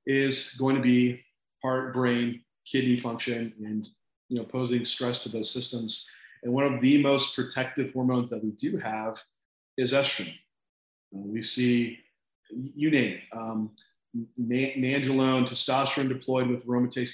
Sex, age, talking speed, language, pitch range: male, 40-59, 145 wpm, English, 120-135 Hz